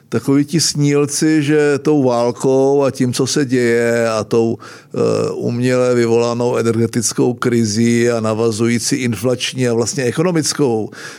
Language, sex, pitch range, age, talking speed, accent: Czech, male, 125-150 Hz, 50-69, 125 wpm, native